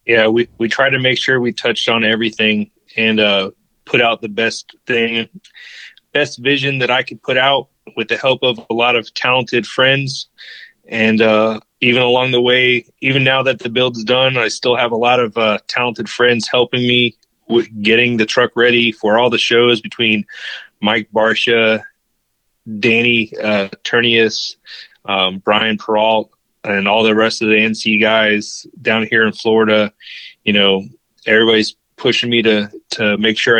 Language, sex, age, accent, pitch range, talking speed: English, male, 30-49, American, 110-125 Hz, 170 wpm